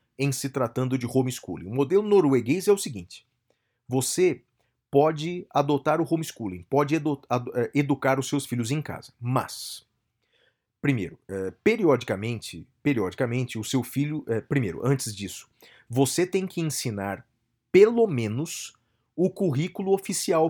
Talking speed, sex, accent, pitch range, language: 130 wpm, male, Brazilian, 120-160 Hz, Portuguese